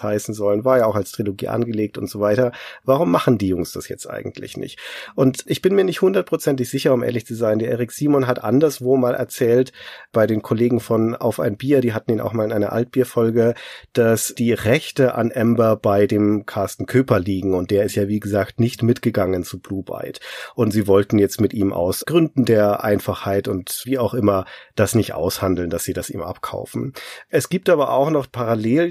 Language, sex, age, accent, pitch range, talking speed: German, male, 40-59, German, 105-130 Hz, 210 wpm